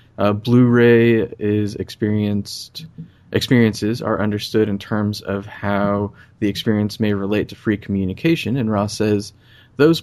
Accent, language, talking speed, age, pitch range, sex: American, English, 130 wpm, 20-39, 100-115 Hz, male